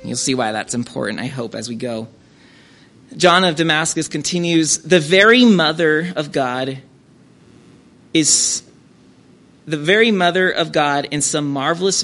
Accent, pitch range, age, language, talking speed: American, 135-170 Hz, 30-49, English, 140 wpm